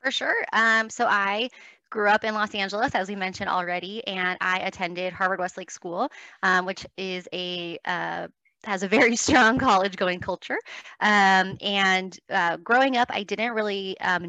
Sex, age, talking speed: female, 20-39, 170 wpm